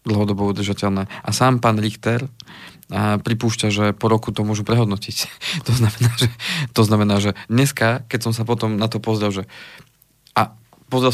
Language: Slovak